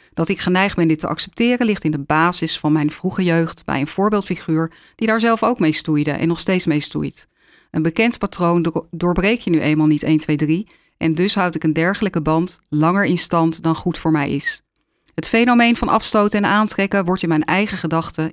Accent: Dutch